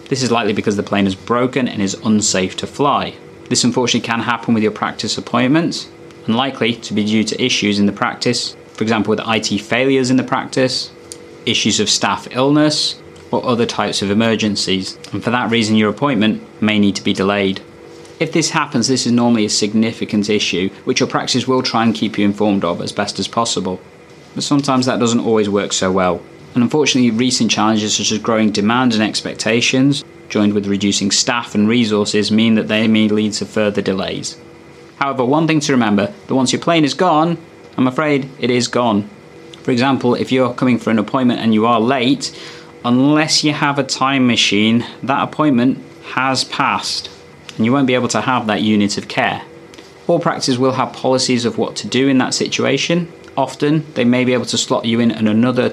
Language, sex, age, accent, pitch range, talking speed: English, male, 20-39, British, 105-130 Hz, 200 wpm